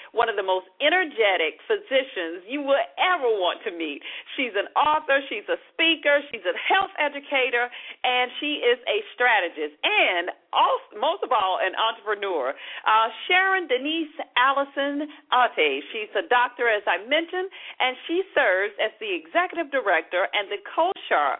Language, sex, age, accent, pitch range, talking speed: English, female, 50-69, American, 205-335 Hz, 155 wpm